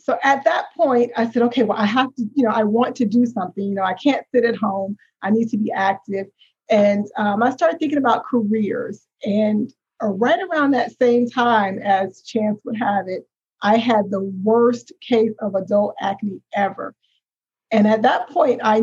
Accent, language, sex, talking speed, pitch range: American, English, female, 200 wpm, 195-235 Hz